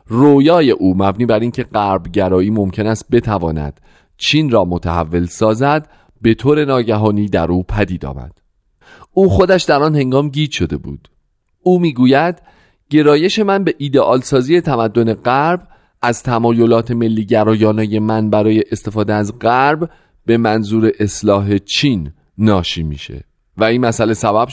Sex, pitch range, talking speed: male, 95-135 Hz, 135 wpm